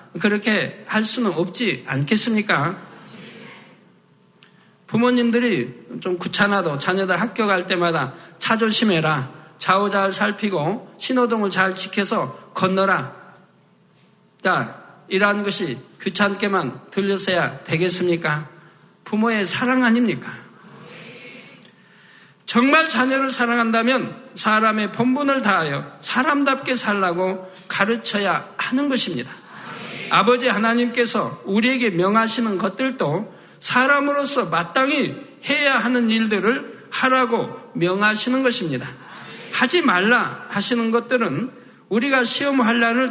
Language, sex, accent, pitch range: Korean, male, native, 190-250 Hz